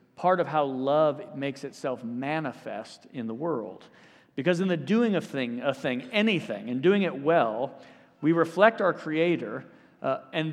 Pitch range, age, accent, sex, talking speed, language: 130-170 Hz, 40-59, American, male, 165 wpm, English